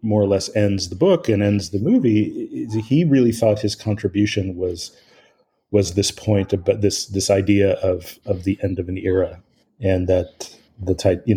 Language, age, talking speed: English, 30-49, 190 wpm